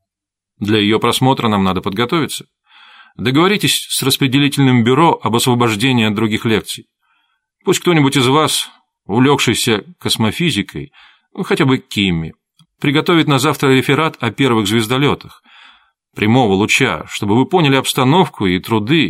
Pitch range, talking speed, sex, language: 110-145 Hz, 125 wpm, male, Russian